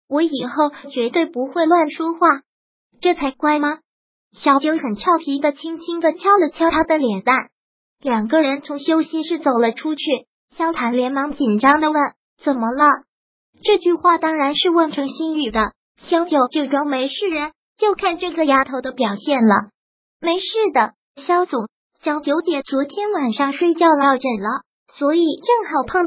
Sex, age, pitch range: male, 20-39, 270-330 Hz